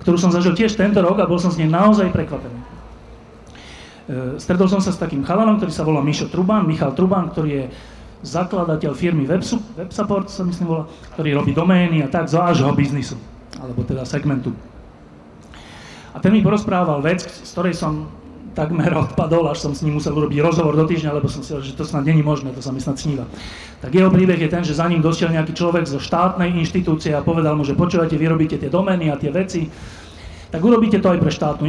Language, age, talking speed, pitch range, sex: Slovak, 30-49, 200 wpm, 145-190 Hz, male